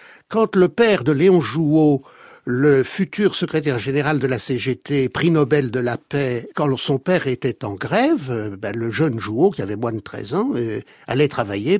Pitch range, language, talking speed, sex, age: 140-215 Hz, French, 180 wpm, male, 60-79